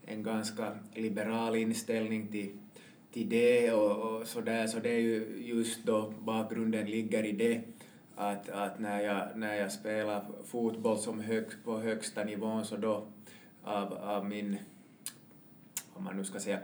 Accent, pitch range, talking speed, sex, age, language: Finnish, 105-115 Hz, 155 wpm, male, 20-39, Swedish